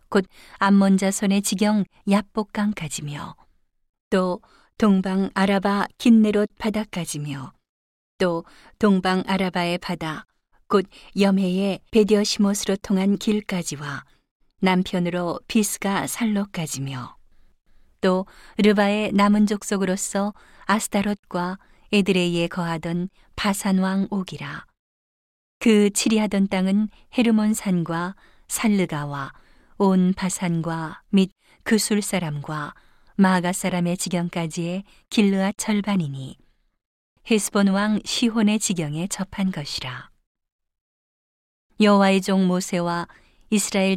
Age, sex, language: 40-59, female, Korean